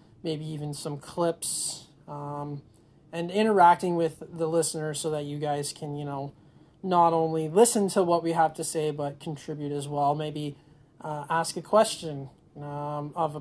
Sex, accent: male, American